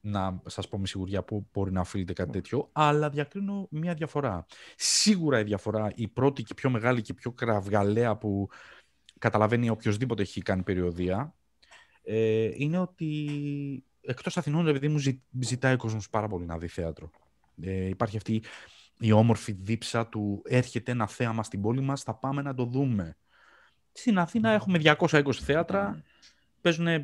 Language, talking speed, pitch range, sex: Greek, 150 wpm, 100-140 Hz, male